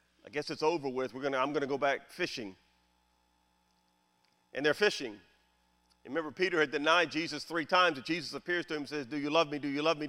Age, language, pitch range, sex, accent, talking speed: 50-69, English, 125-180 Hz, male, American, 215 wpm